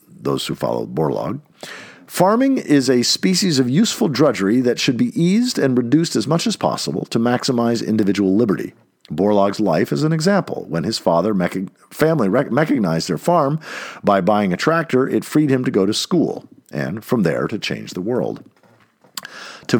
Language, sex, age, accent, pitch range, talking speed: English, male, 50-69, American, 100-160 Hz, 170 wpm